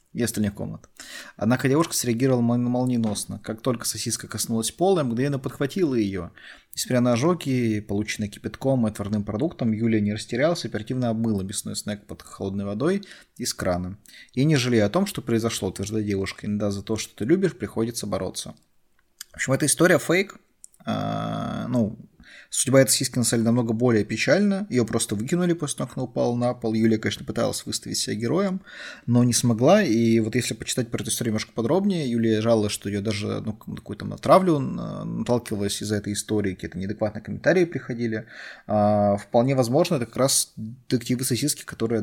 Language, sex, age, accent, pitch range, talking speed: Russian, male, 20-39, native, 105-125 Hz, 170 wpm